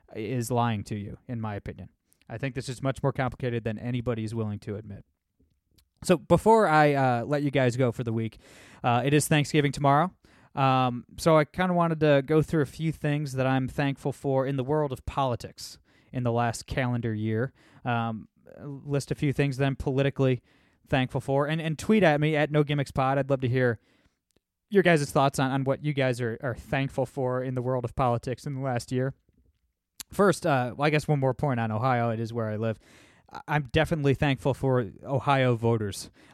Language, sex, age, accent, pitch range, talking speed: English, male, 20-39, American, 120-140 Hz, 205 wpm